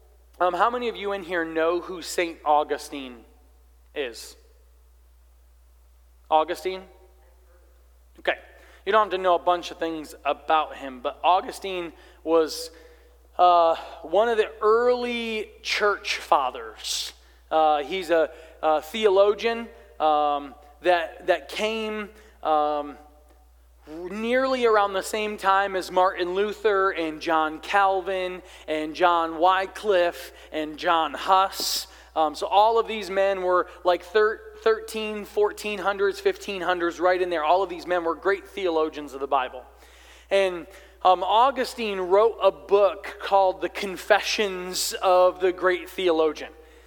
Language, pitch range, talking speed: English, 160-200 Hz, 125 wpm